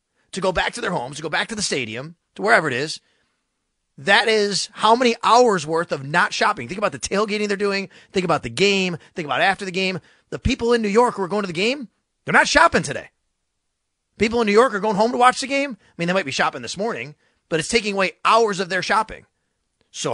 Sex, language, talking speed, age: male, English, 245 wpm, 30-49